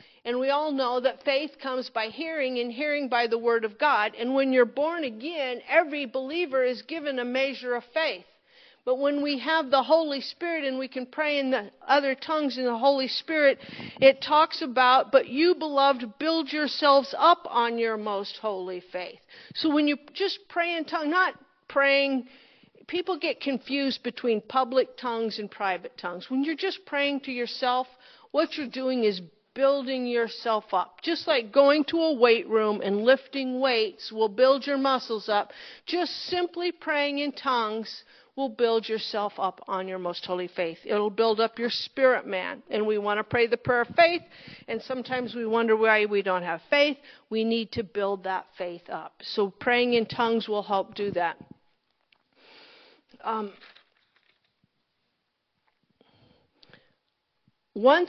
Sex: female